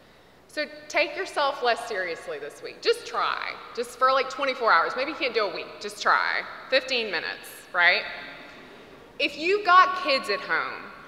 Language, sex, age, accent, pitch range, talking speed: English, female, 20-39, American, 220-300 Hz, 170 wpm